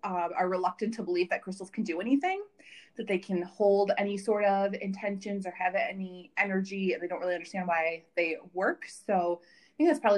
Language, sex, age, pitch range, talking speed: English, female, 30-49, 180-225 Hz, 205 wpm